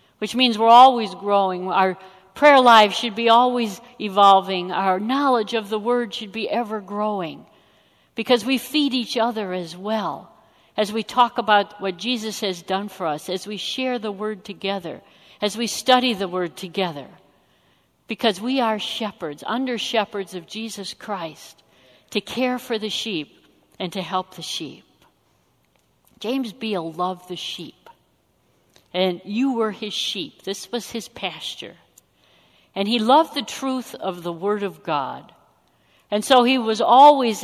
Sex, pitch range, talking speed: female, 190-245 Hz, 155 wpm